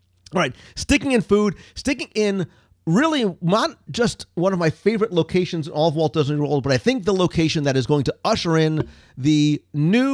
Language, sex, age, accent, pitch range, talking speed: English, male, 40-59, American, 130-185 Hz, 200 wpm